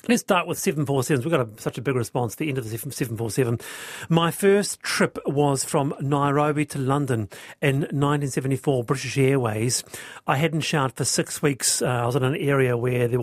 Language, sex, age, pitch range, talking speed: English, male, 40-59, 135-165 Hz, 200 wpm